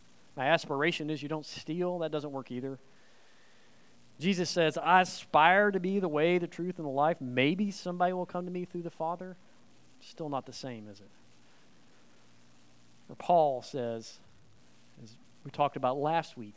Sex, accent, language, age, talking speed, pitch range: male, American, English, 40-59, 170 wpm, 120-180 Hz